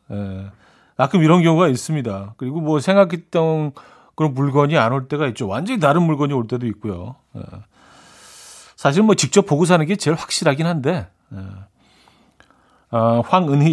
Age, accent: 40-59, native